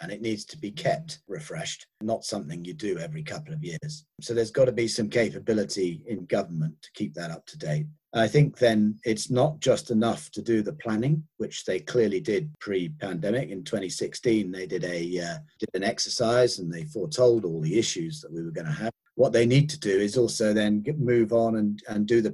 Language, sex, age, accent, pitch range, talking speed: English, male, 40-59, British, 105-155 Hz, 220 wpm